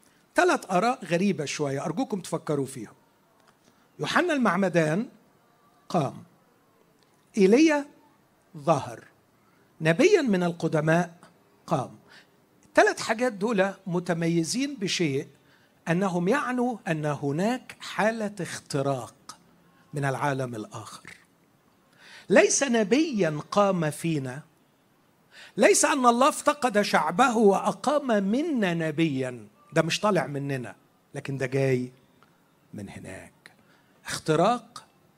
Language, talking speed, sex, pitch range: Arabic, 90 wpm, male, 150-225 Hz